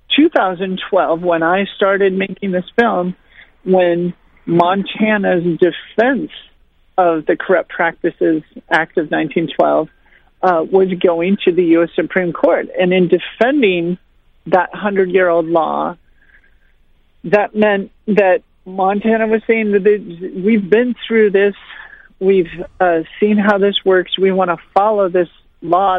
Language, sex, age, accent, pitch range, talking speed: English, male, 50-69, American, 170-200 Hz, 125 wpm